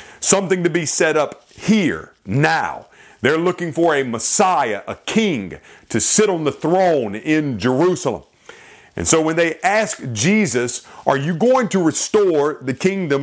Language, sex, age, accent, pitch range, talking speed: English, male, 40-59, American, 150-210 Hz, 155 wpm